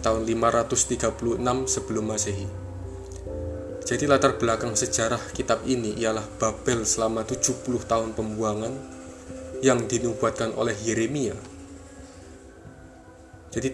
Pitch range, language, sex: 105-120 Hz, Indonesian, male